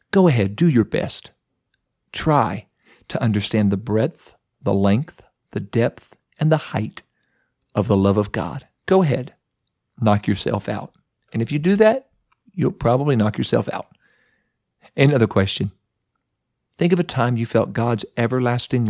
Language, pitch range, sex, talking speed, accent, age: English, 110-150 Hz, male, 150 wpm, American, 50-69